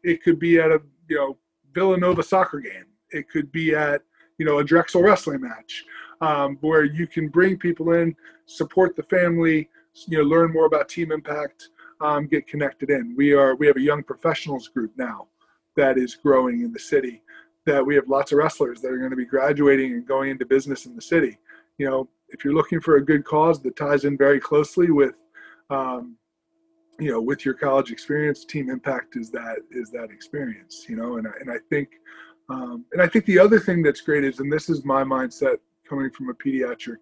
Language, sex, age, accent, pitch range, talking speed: English, male, 20-39, American, 140-195 Hz, 210 wpm